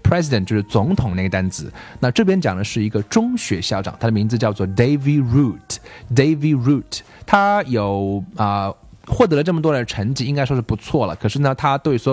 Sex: male